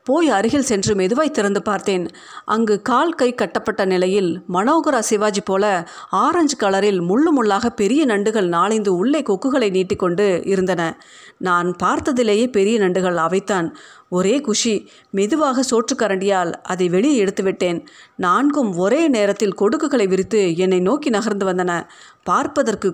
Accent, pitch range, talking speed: native, 185-245 Hz, 125 wpm